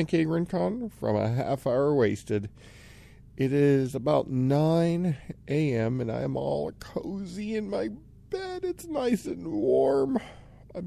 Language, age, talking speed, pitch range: English, 40-59, 140 wpm, 105-150 Hz